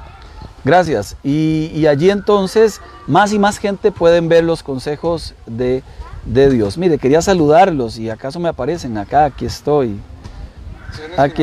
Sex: male